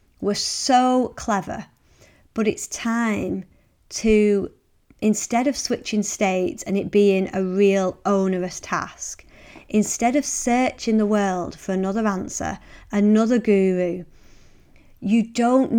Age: 30-49